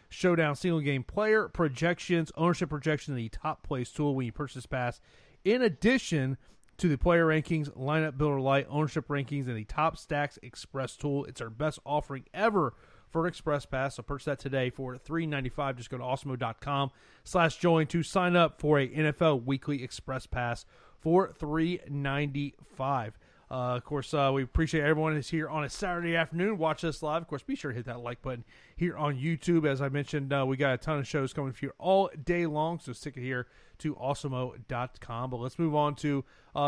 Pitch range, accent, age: 130-155 Hz, American, 30-49